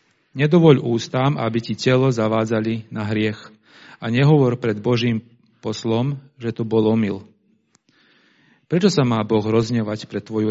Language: Slovak